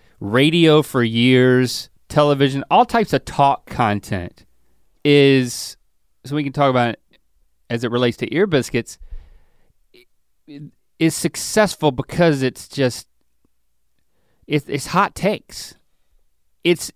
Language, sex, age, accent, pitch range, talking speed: English, male, 30-49, American, 110-150 Hz, 110 wpm